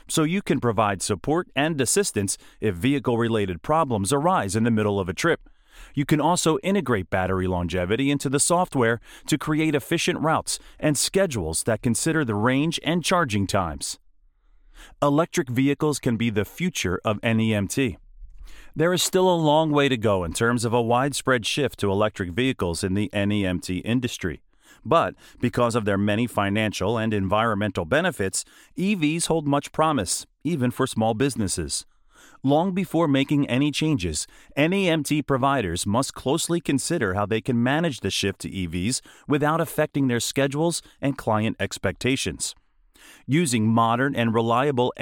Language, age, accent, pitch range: English, 40-59, American, 105-155 Hz